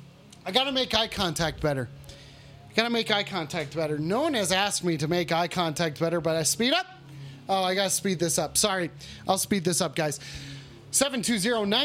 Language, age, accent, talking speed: English, 30-49, American, 200 wpm